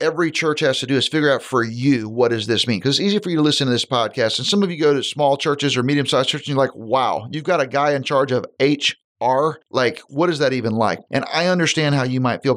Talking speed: 285 wpm